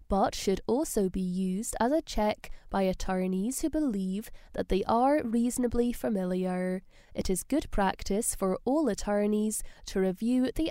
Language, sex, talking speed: English, female, 150 wpm